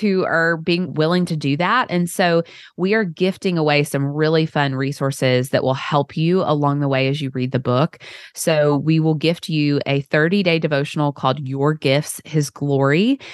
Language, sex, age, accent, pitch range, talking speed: English, female, 20-39, American, 135-165 Hz, 190 wpm